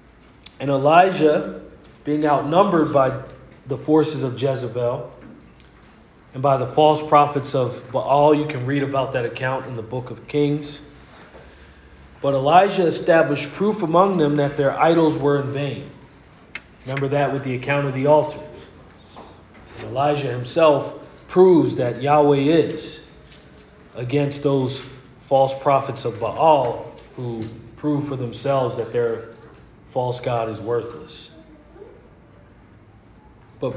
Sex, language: male, English